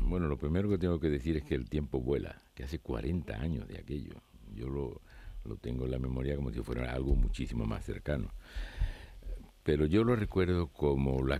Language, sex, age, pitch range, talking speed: Spanish, male, 60-79, 65-90 Hz, 200 wpm